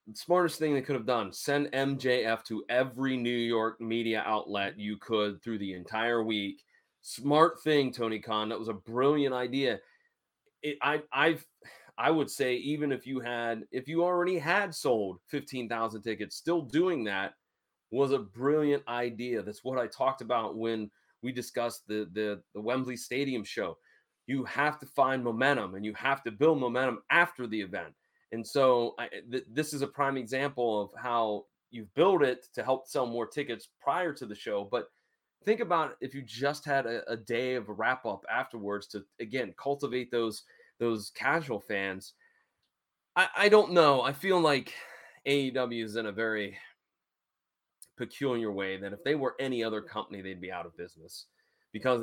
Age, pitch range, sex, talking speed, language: 30-49, 110-140 Hz, male, 180 wpm, English